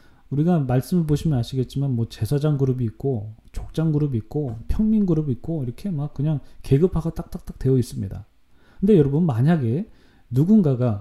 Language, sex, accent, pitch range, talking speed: English, male, Korean, 120-165 Hz, 135 wpm